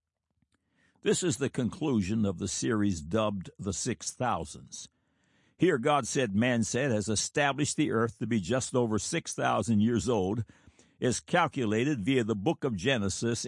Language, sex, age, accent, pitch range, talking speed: English, male, 60-79, American, 110-145 Hz, 145 wpm